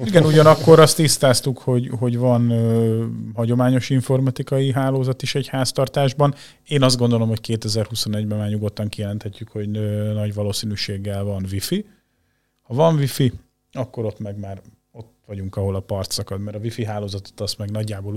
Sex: male